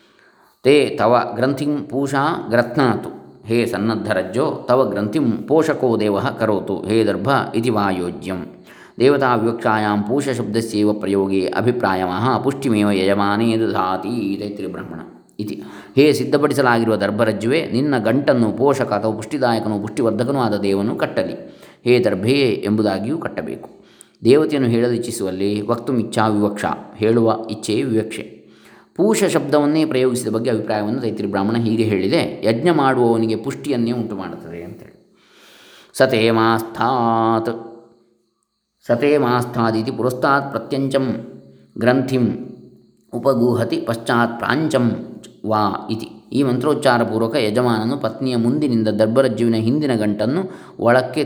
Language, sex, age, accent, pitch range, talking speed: Kannada, male, 20-39, native, 105-130 Hz, 100 wpm